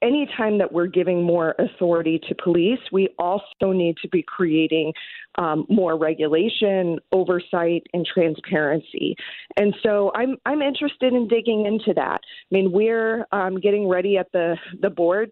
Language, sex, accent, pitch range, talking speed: English, female, American, 175-210 Hz, 155 wpm